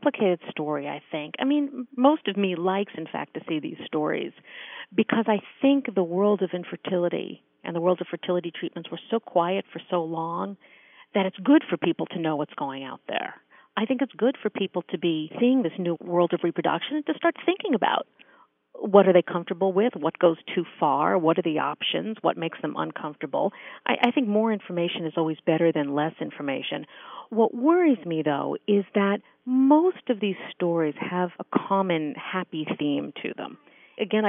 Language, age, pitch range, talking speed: English, 50-69, 165-215 Hz, 195 wpm